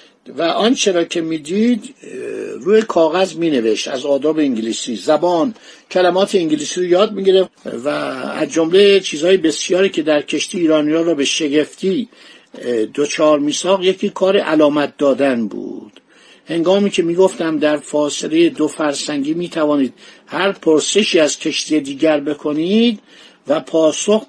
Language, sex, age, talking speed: Persian, male, 60-79, 130 wpm